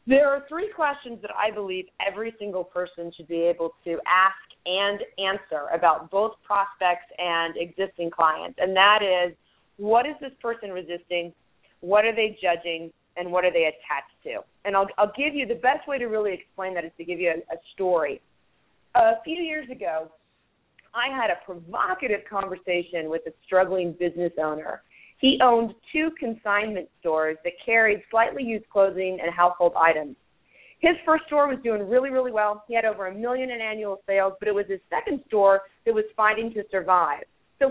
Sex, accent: female, American